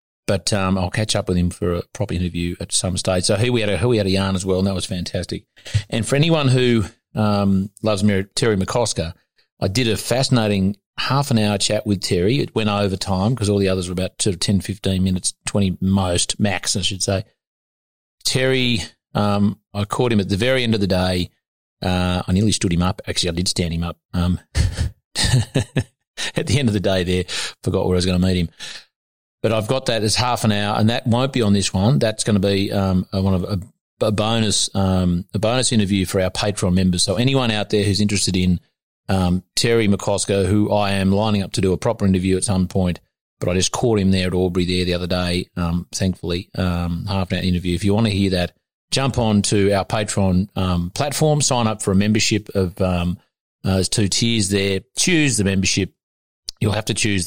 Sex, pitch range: male, 90-110 Hz